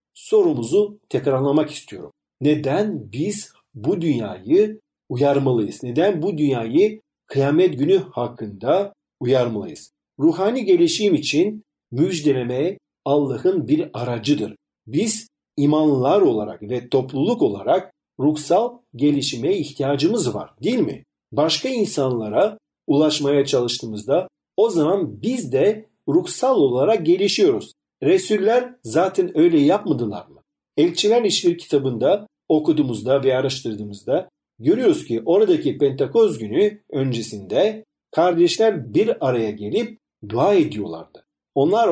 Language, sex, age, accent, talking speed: Turkish, male, 50-69, native, 100 wpm